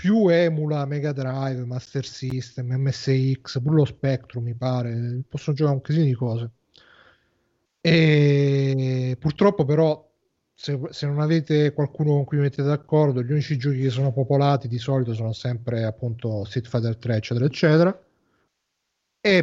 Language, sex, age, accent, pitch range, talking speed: Italian, male, 30-49, native, 125-150 Hz, 140 wpm